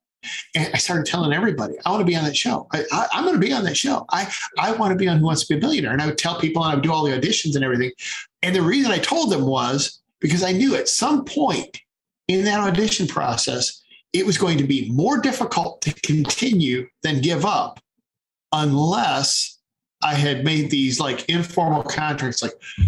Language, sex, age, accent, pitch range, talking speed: English, male, 50-69, American, 125-165 Hz, 225 wpm